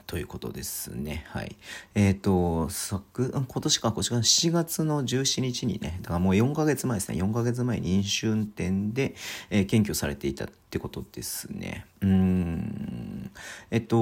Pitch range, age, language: 90-125 Hz, 40-59, Japanese